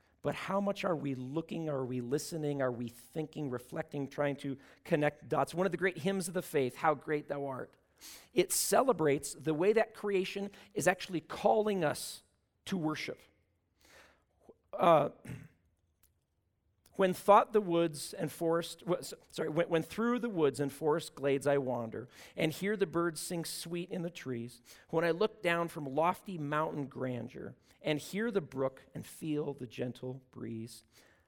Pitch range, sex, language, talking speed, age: 125-170 Hz, male, English, 165 wpm, 40-59